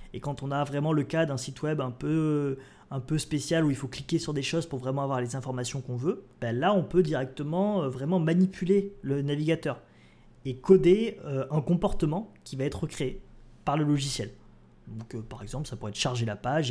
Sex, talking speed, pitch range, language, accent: male, 210 wpm, 125-165 Hz, French, French